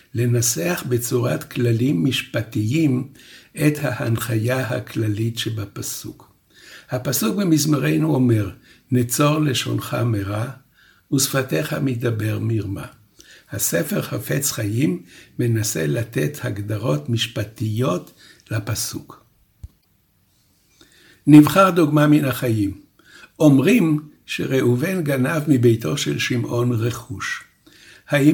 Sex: male